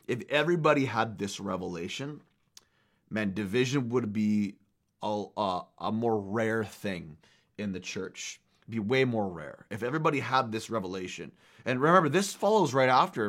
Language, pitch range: English, 105-135 Hz